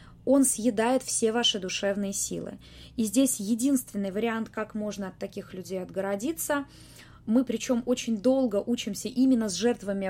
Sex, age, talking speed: female, 20-39, 145 wpm